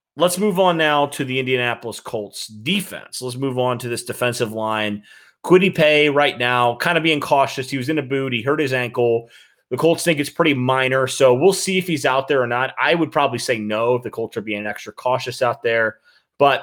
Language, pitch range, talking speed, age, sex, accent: English, 110-145 Hz, 225 wpm, 30-49, male, American